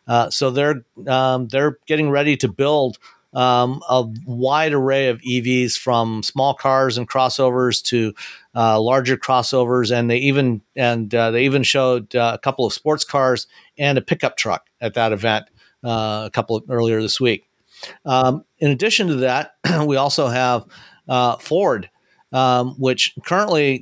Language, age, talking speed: English, 50-69, 165 wpm